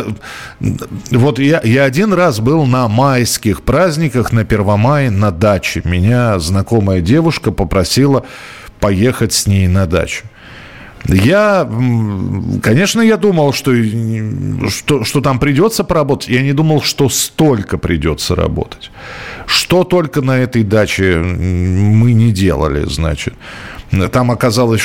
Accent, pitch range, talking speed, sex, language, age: native, 100-130 Hz, 120 wpm, male, Russian, 40-59